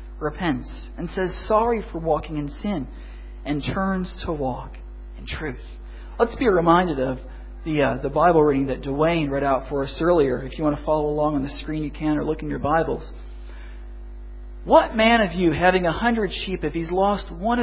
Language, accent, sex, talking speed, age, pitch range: English, American, male, 195 wpm, 40-59, 130-175 Hz